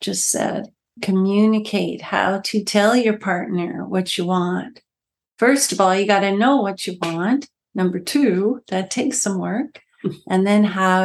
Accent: American